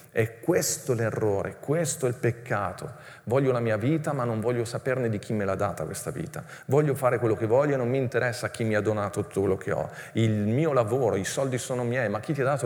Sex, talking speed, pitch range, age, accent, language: male, 245 wpm, 105-135 Hz, 40-59, native, Italian